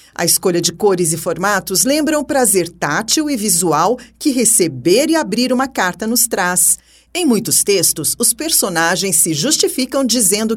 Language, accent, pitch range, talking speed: Portuguese, Brazilian, 175-260 Hz, 160 wpm